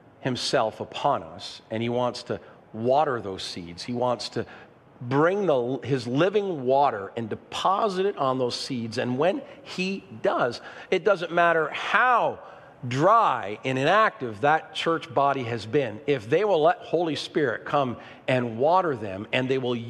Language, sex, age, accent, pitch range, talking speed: English, male, 50-69, American, 115-140 Hz, 160 wpm